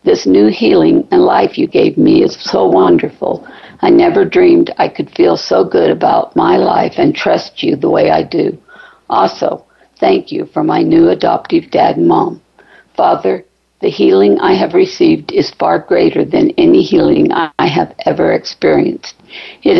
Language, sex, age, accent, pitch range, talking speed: English, female, 60-79, American, 320-385 Hz, 170 wpm